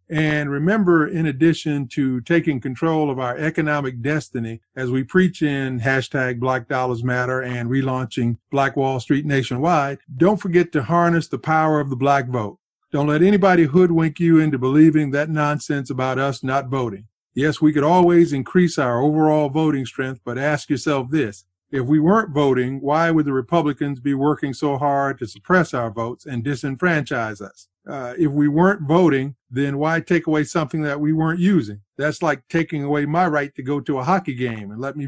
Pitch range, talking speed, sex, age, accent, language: 130-160 Hz, 185 wpm, male, 50-69, American, English